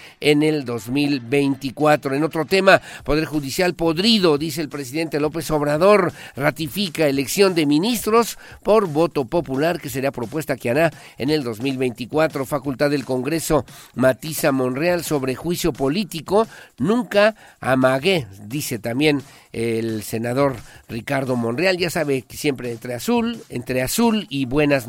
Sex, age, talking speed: male, 50-69, 135 wpm